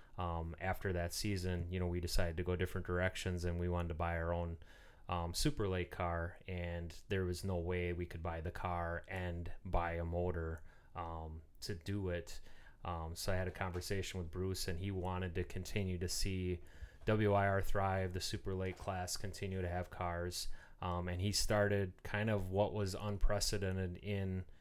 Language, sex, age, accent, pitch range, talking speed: English, male, 30-49, American, 85-100 Hz, 185 wpm